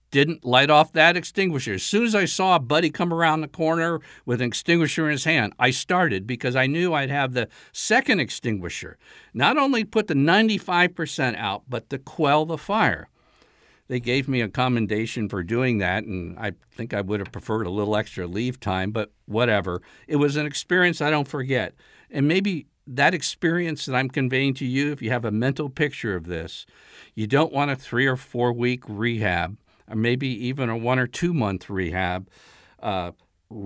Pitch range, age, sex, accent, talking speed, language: 110-155 Hz, 60-79, male, American, 195 wpm, English